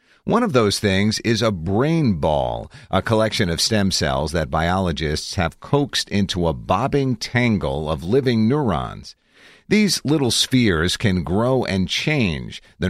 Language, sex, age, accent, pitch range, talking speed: English, male, 50-69, American, 90-120 Hz, 150 wpm